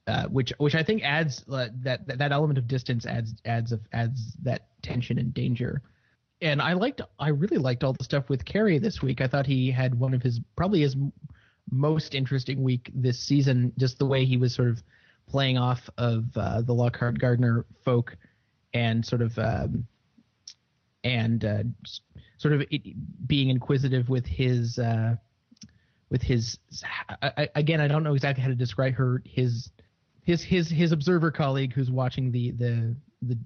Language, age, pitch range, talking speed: English, 30-49, 120-140 Hz, 180 wpm